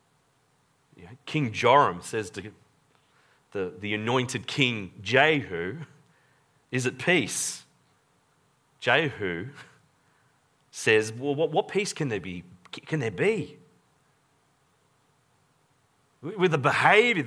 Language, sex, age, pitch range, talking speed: English, male, 40-59, 130-160 Hz, 95 wpm